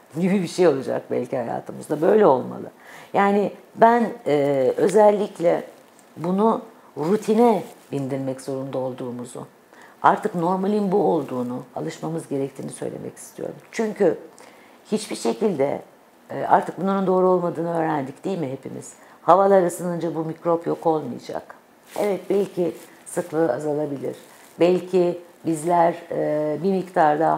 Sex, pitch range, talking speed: female, 140-180 Hz, 115 wpm